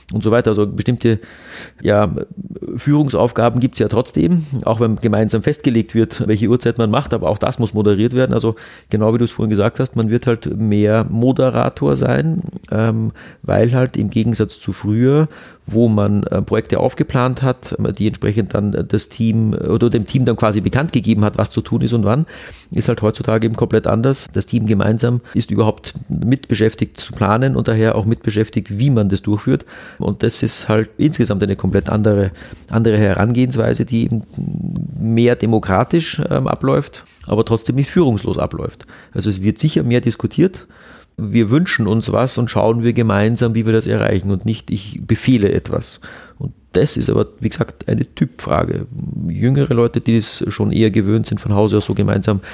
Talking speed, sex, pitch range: 180 wpm, male, 105-125 Hz